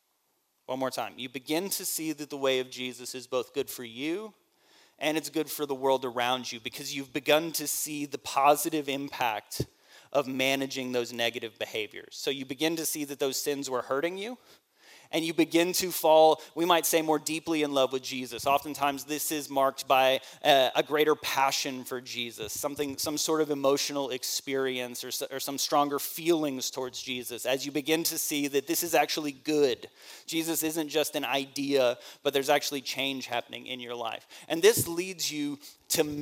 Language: English